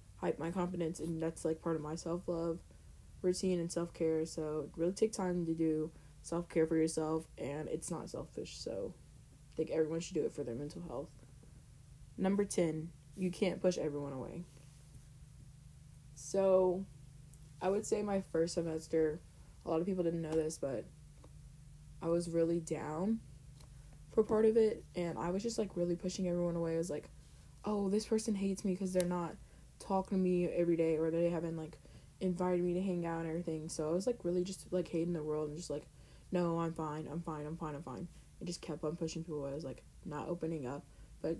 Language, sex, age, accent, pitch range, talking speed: English, female, 20-39, American, 150-175 Hz, 200 wpm